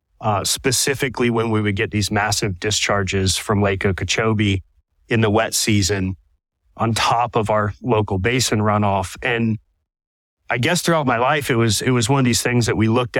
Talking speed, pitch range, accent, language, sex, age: 180 wpm, 95-115 Hz, American, English, male, 30-49